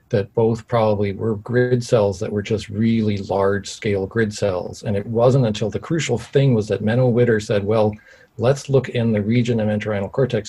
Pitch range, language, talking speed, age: 100-120 Hz, English, 200 wpm, 40-59